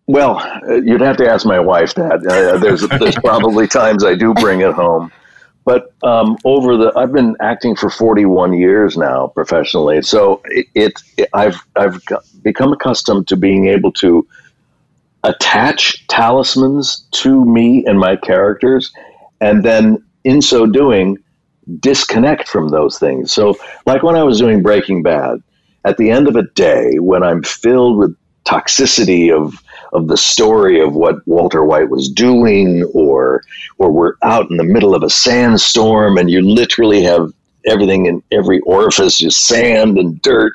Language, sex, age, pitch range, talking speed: English, male, 60-79, 95-130 Hz, 160 wpm